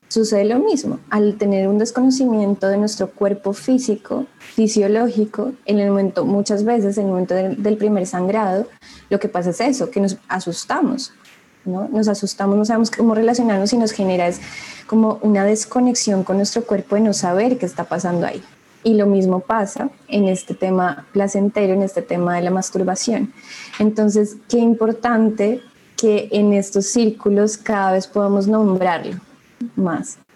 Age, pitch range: 20-39, 195-225 Hz